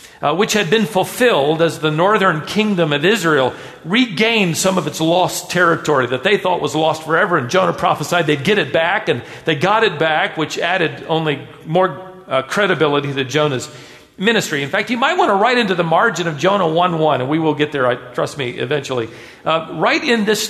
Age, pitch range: 50-69, 155-215 Hz